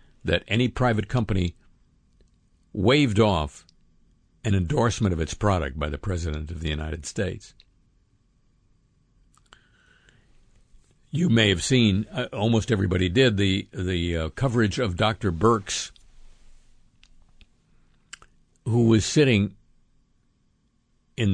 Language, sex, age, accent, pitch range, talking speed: English, male, 60-79, American, 80-115 Hz, 105 wpm